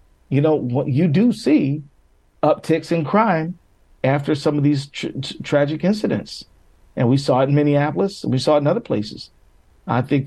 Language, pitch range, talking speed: English, 115-145 Hz, 165 wpm